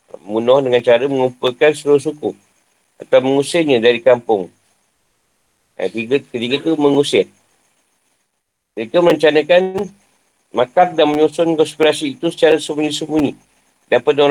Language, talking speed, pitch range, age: Malay, 110 wpm, 130-160 Hz, 50-69